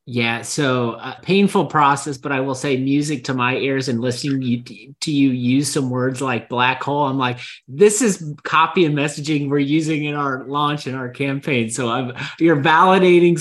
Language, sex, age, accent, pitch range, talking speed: English, male, 30-49, American, 125-150 Hz, 200 wpm